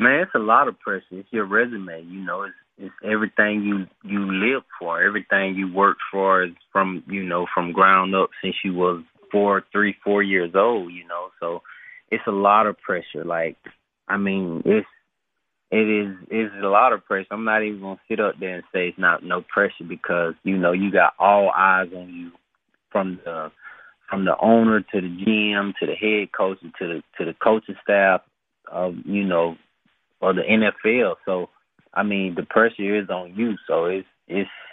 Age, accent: 30-49, American